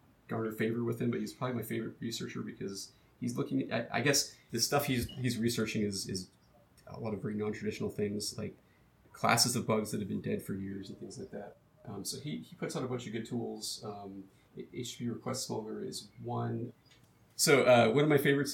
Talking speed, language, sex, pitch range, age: 220 wpm, English, male, 105-125 Hz, 30-49